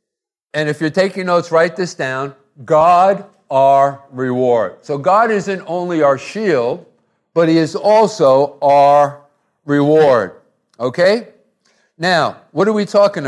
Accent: American